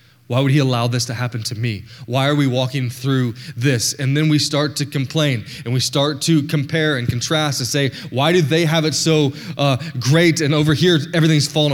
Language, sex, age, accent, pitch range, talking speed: English, male, 20-39, American, 120-150 Hz, 220 wpm